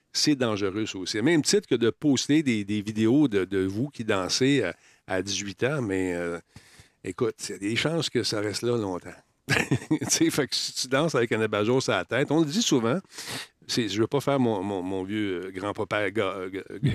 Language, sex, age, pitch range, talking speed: French, male, 50-69, 95-135 Hz, 225 wpm